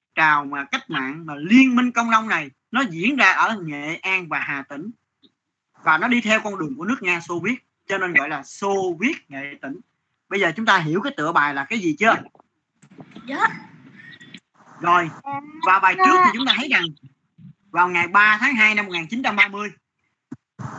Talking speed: 185 wpm